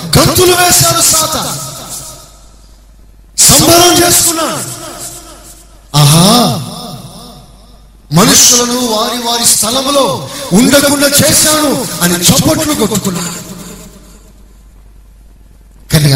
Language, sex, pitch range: Telugu, male, 150-240 Hz